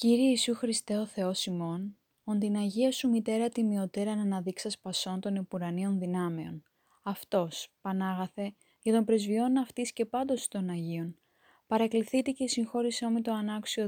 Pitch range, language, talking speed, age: 190-230 Hz, Greek, 145 wpm, 20-39